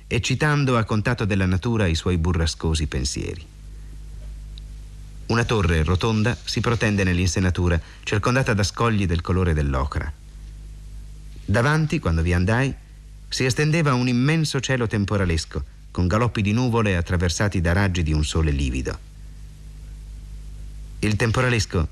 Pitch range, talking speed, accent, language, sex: 80-110 Hz, 125 wpm, native, Italian, male